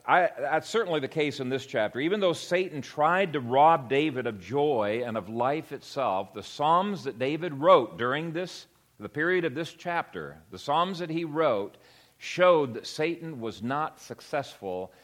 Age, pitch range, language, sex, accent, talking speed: 50-69, 120-175 Hz, English, male, American, 175 wpm